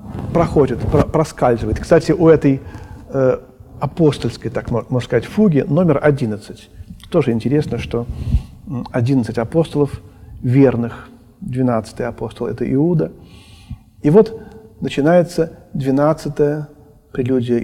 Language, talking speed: Russian, 100 wpm